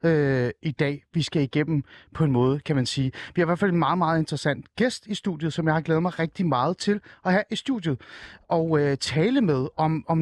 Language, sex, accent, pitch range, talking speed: Danish, male, native, 140-195 Hz, 240 wpm